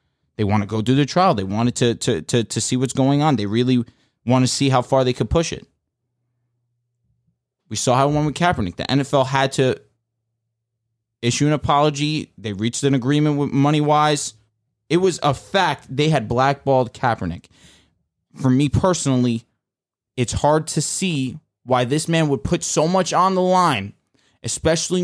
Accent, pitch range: American, 120-155 Hz